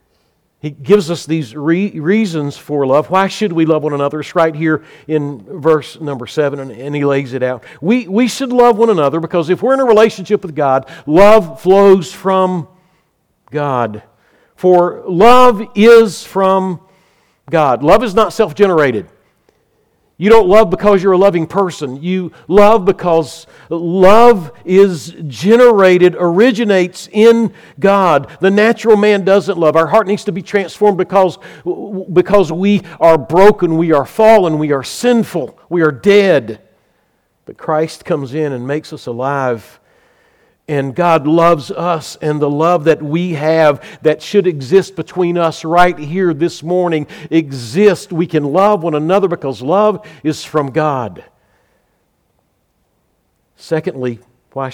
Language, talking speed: English, 150 wpm